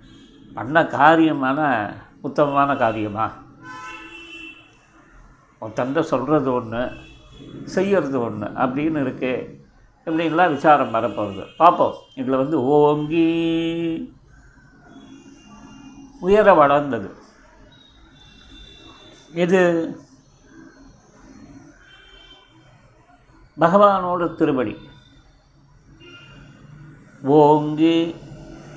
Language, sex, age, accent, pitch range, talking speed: Tamil, male, 50-69, native, 140-180 Hz, 50 wpm